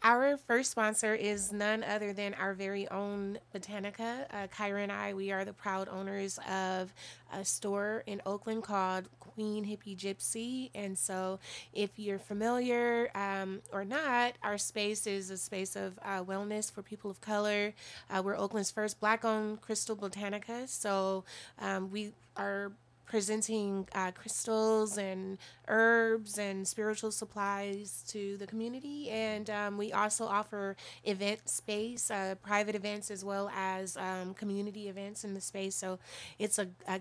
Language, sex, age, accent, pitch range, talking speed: English, female, 20-39, American, 195-215 Hz, 150 wpm